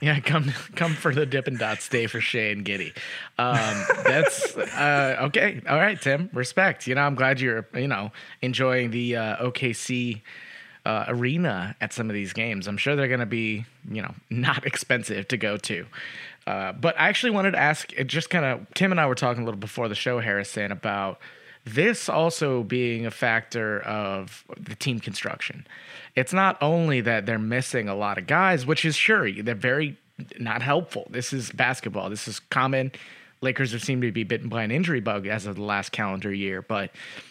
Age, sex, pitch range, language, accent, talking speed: 20-39, male, 110-145 Hz, English, American, 200 wpm